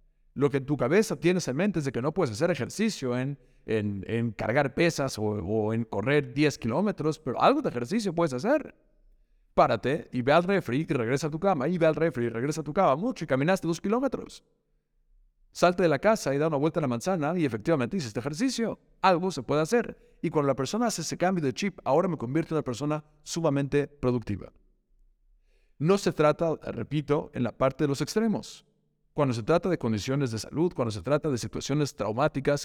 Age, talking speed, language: 50-69, 215 wpm, Spanish